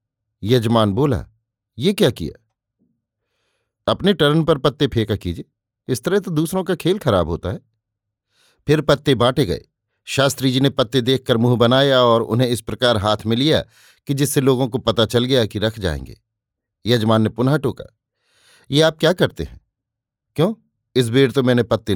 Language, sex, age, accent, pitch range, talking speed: Hindi, male, 50-69, native, 110-150 Hz, 170 wpm